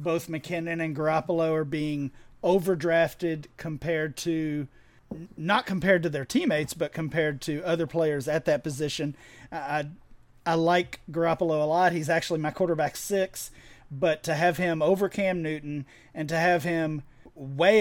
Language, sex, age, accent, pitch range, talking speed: English, male, 40-59, American, 140-170 Hz, 150 wpm